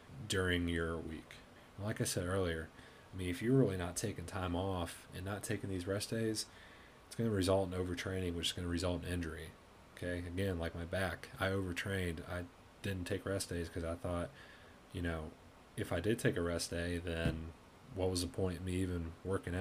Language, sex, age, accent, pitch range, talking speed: English, male, 30-49, American, 85-105 Hz, 210 wpm